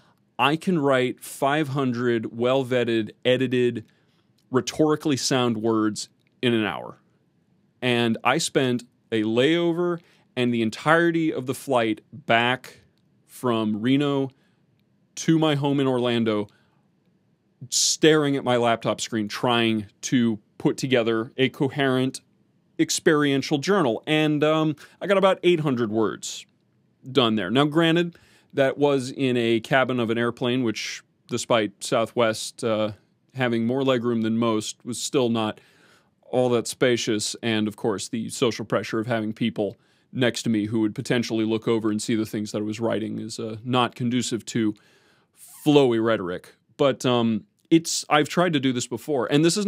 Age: 30-49